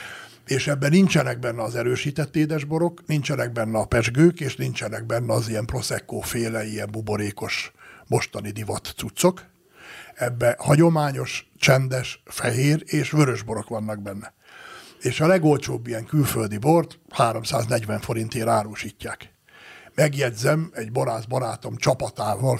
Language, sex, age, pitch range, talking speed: Hungarian, male, 60-79, 110-140 Hz, 120 wpm